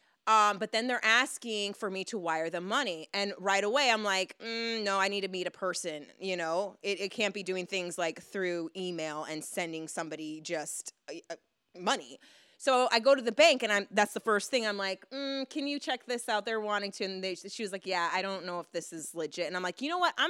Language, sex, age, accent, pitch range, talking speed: English, female, 30-49, American, 175-240 Hz, 240 wpm